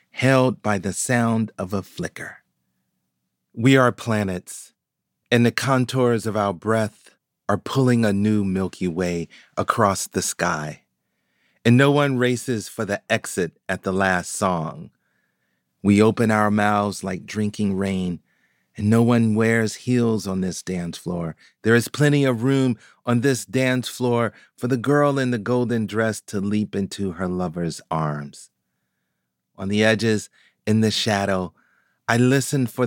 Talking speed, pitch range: 150 wpm, 85-120 Hz